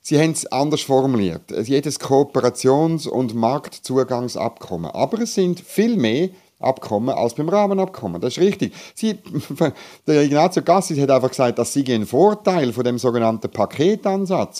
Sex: male